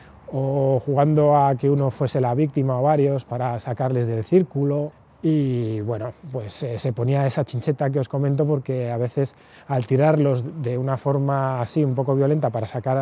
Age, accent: 20-39, Spanish